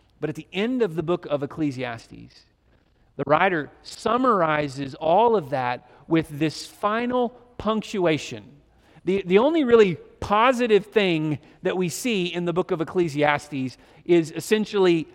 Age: 40-59